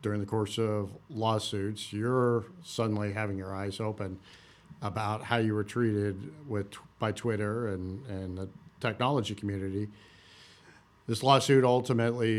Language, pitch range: English, 105-125 Hz